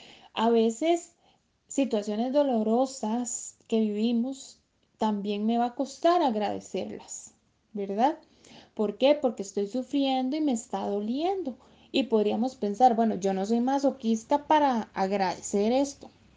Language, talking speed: Spanish, 120 wpm